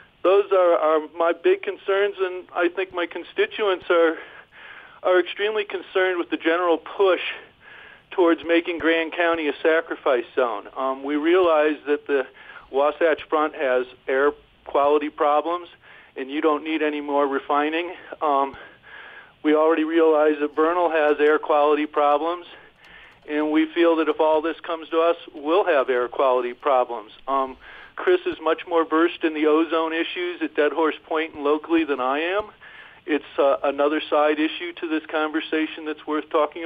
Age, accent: 50-69, American